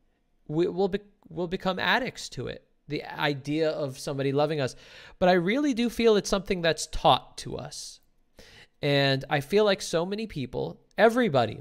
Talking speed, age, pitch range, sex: 170 wpm, 20-39, 135-185 Hz, male